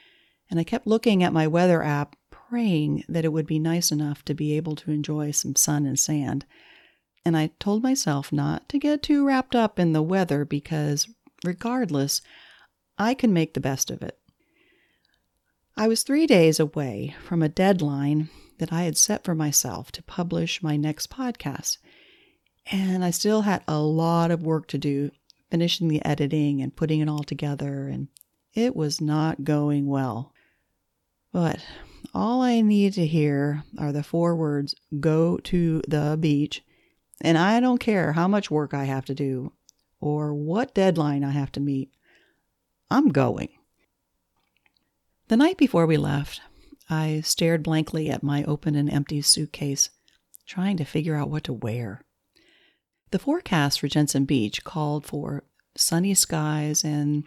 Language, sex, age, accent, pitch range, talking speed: English, female, 40-59, American, 145-185 Hz, 160 wpm